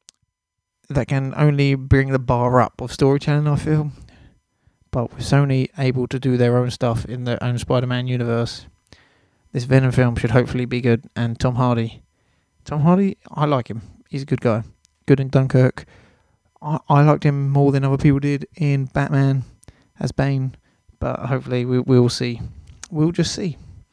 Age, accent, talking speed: 20-39, British, 170 wpm